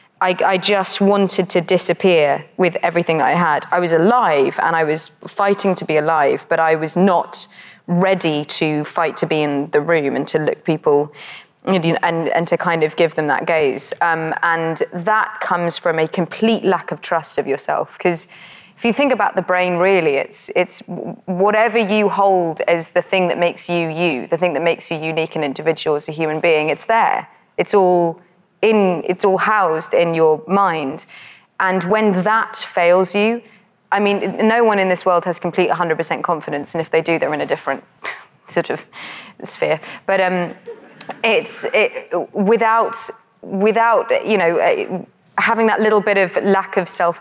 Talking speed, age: 180 wpm, 20-39